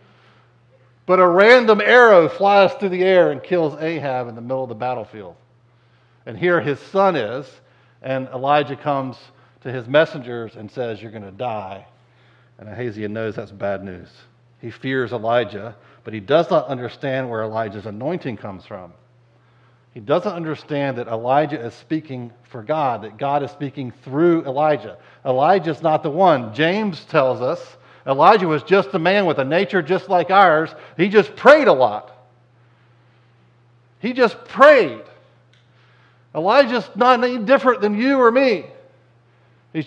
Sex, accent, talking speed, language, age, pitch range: male, American, 155 wpm, English, 50-69, 120-160 Hz